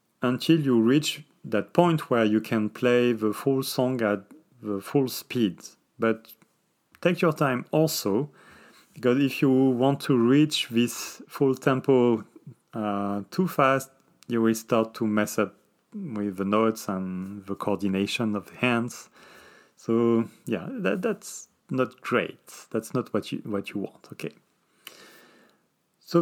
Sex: male